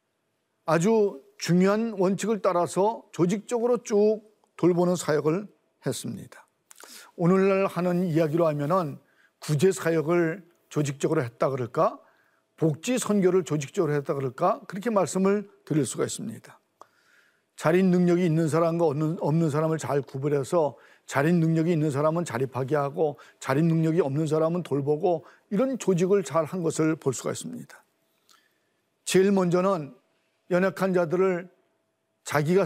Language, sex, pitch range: Korean, male, 155-195 Hz